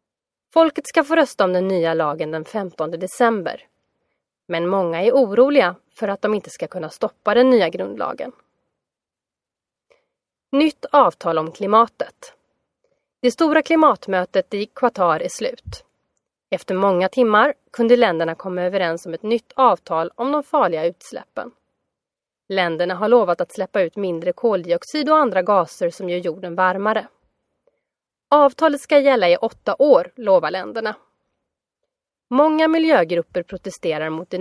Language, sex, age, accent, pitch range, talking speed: Swedish, female, 30-49, native, 180-270 Hz, 140 wpm